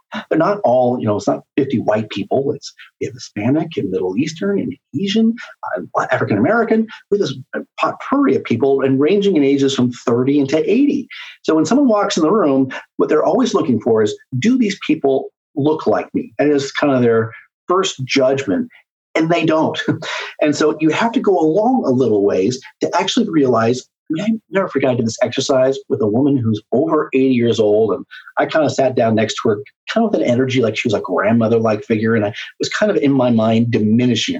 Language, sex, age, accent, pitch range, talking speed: English, male, 40-59, American, 125-195 Hz, 215 wpm